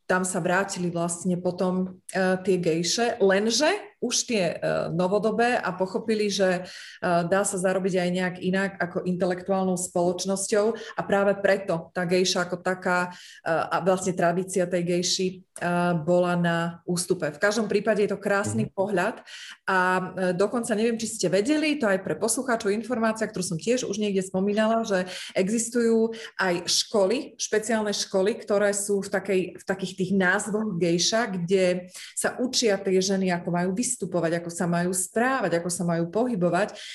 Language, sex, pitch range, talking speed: Slovak, female, 180-215 Hz, 150 wpm